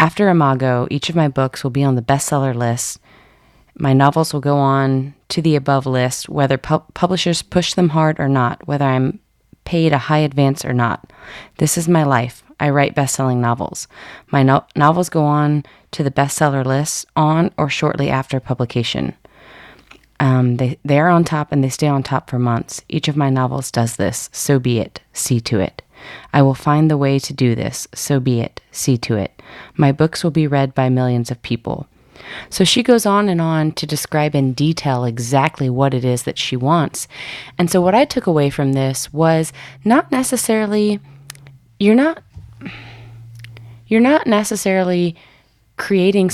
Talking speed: 185 wpm